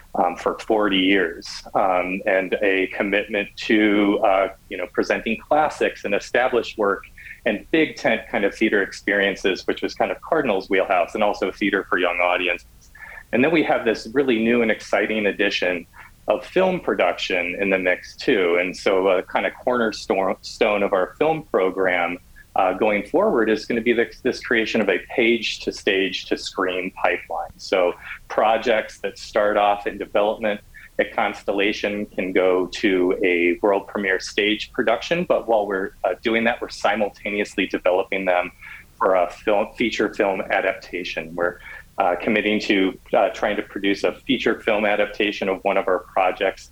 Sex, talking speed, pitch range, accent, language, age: male, 170 wpm, 90-110 Hz, American, English, 30-49